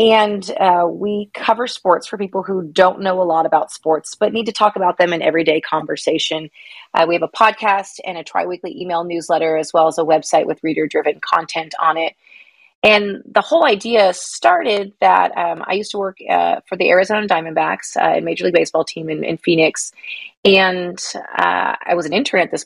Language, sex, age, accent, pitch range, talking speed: English, female, 30-49, American, 165-215 Hz, 200 wpm